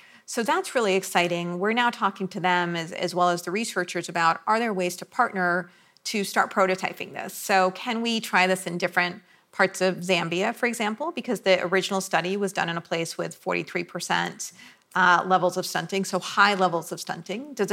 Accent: American